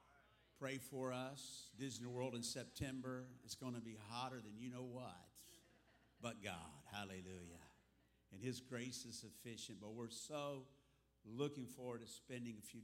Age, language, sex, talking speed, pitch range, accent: 60-79, English, male, 155 wpm, 110-130 Hz, American